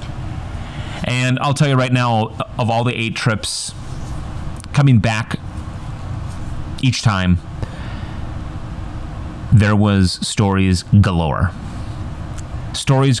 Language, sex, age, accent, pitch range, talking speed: English, male, 30-49, American, 105-125 Hz, 90 wpm